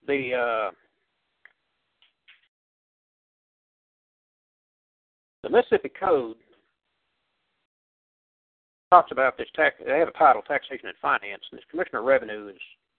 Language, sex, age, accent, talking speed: English, male, 60-79, American, 100 wpm